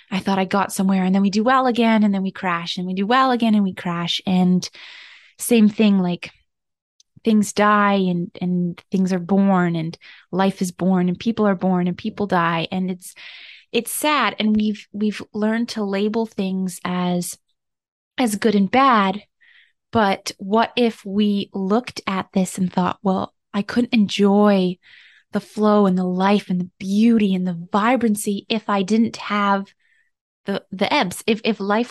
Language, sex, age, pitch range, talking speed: English, female, 20-39, 190-225 Hz, 180 wpm